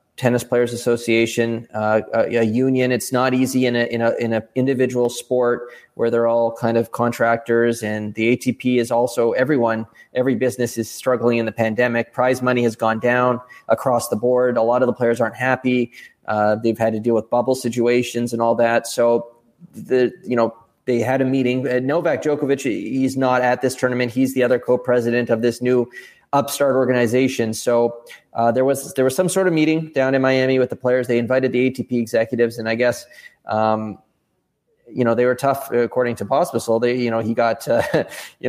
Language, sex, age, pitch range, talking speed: English, male, 20-39, 115-135 Hz, 200 wpm